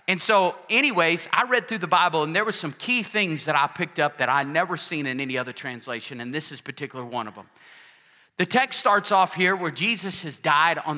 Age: 40-59